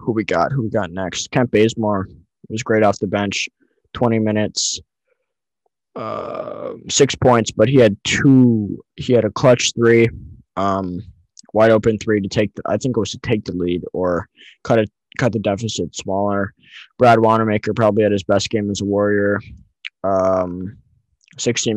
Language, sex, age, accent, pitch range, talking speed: English, male, 20-39, American, 95-115 Hz, 170 wpm